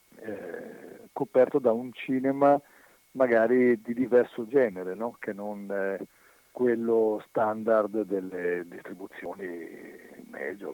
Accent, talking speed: native, 85 wpm